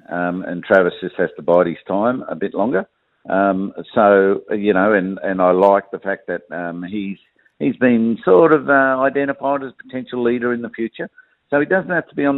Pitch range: 100-120 Hz